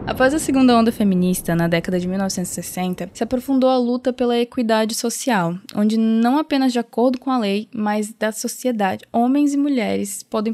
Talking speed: 175 wpm